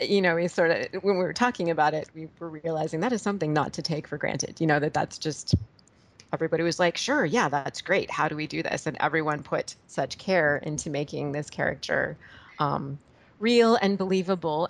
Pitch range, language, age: 155-175 Hz, English, 30-49